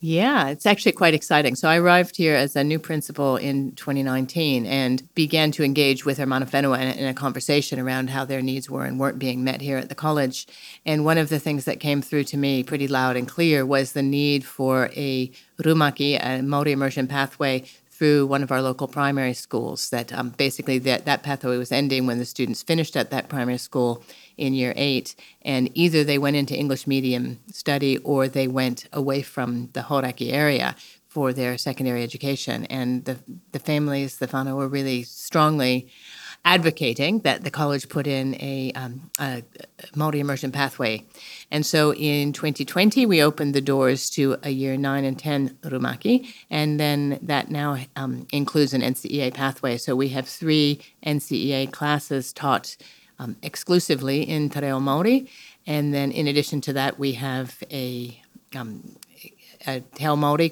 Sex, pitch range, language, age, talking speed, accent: female, 130-150 Hz, English, 40-59, 175 wpm, American